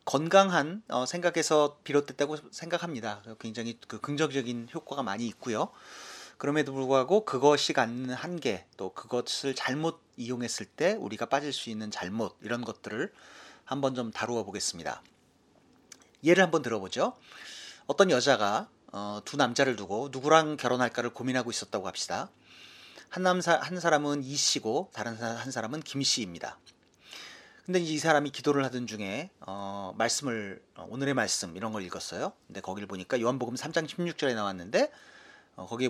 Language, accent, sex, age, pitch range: Korean, native, male, 40-59, 115-155 Hz